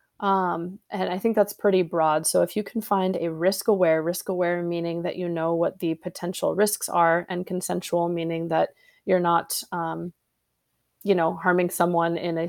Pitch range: 170-200 Hz